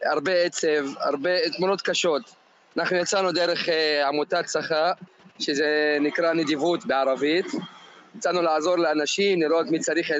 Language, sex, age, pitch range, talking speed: Hebrew, male, 20-39, 165-190 Hz, 125 wpm